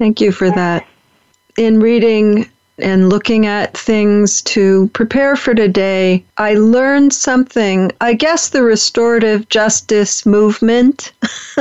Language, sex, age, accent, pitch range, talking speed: English, female, 50-69, American, 200-240 Hz, 120 wpm